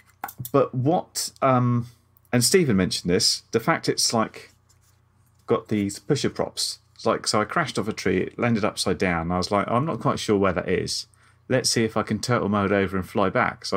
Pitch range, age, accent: 95-120 Hz, 30-49, British